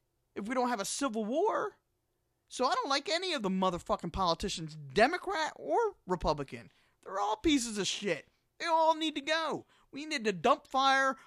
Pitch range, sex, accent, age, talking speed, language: 155-265 Hz, male, American, 40-59, 180 wpm, English